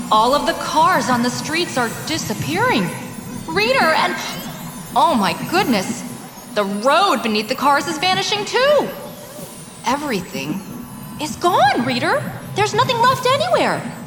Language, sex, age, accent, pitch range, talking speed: English, female, 20-39, American, 200-300 Hz, 130 wpm